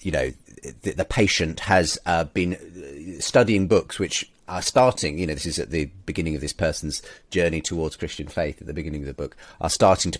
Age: 30-49